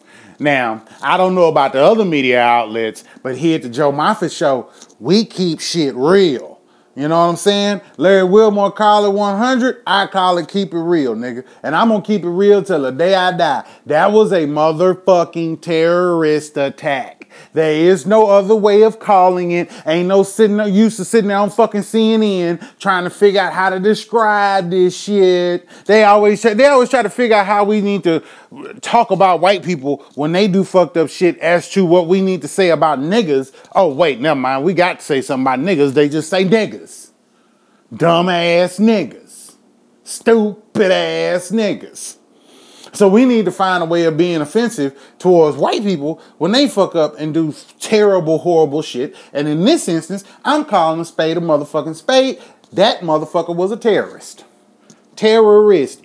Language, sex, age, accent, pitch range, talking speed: English, male, 30-49, American, 160-205 Hz, 185 wpm